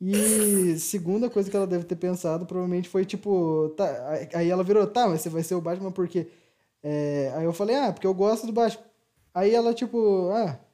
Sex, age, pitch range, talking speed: male, 20-39, 165-210 Hz, 210 wpm